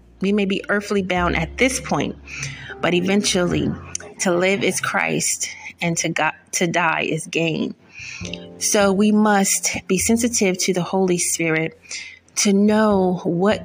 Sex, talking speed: female, 140 wpm